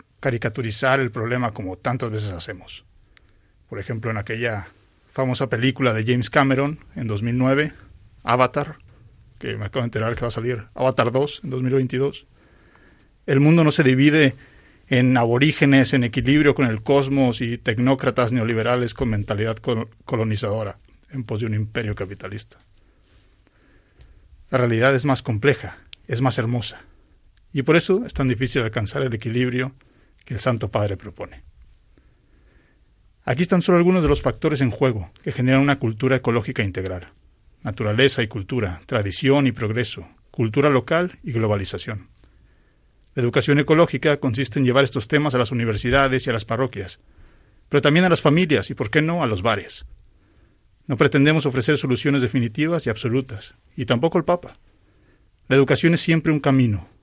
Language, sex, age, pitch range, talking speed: Spanish, male, 40-59, 105-135 Hz, 155 wpm